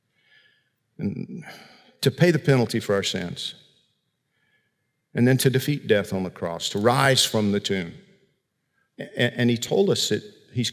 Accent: American